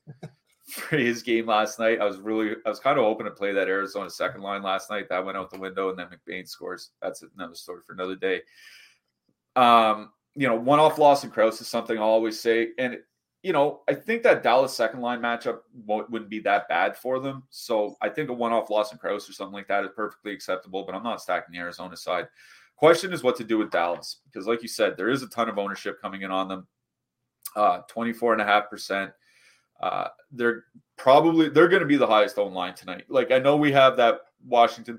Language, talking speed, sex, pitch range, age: English, 235 wpm, male, 100-130 Hz, 30-49